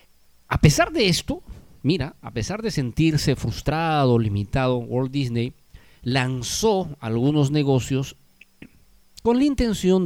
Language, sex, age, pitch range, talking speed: Spanish, male, 50-69, 115-175 Hz, 115 wpm